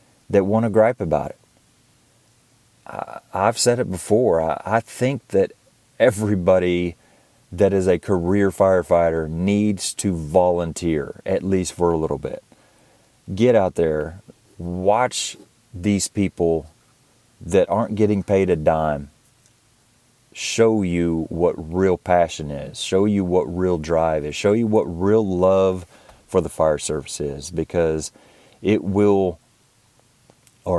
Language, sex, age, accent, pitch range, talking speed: English, male, 40-59, American, 80-105 Hz, 130 wpm